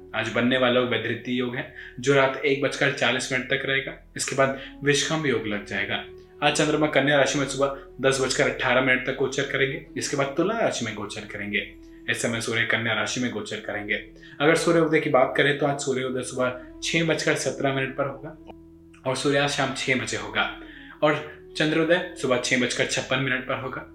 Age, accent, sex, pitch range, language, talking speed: 20-39, native, male, 115-145 Hz, Hindi, 195 wpm